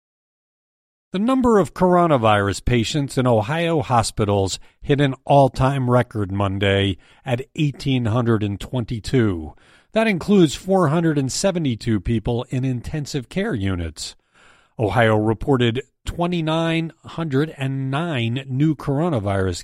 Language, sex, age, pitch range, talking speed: English, male, 40-59, 105-155 Hz, 85 wpm